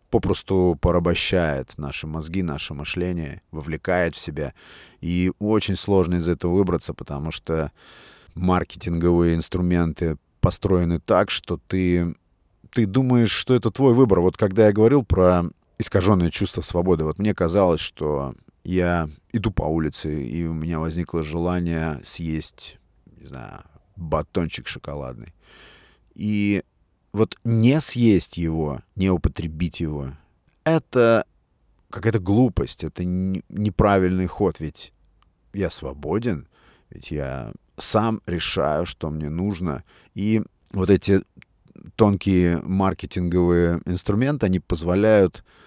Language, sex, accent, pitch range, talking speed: Russian, male, native, 80-100 Hz, 115 wpm